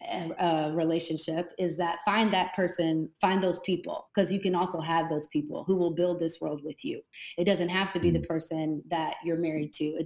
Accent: American